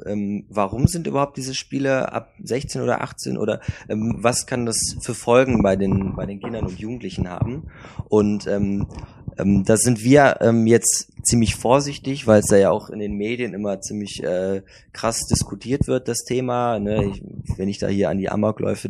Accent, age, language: German, 20-39, German